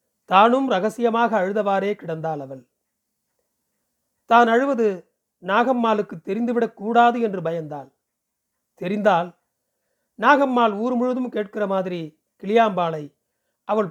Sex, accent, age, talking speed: male, native, 40-59, 80 wpm